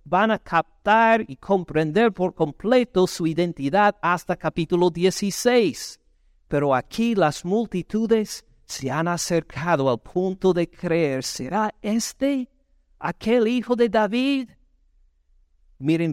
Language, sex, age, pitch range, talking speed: Spanish, male, 50-69, 130-195 Hz, 110 wpm